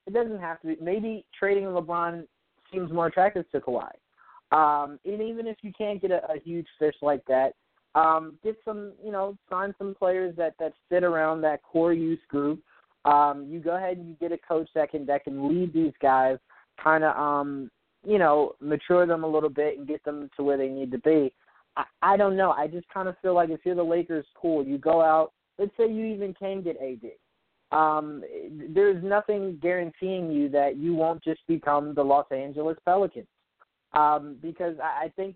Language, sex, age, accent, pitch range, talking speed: English, male, 20-39, American, 150-185 Hz, 205 wpm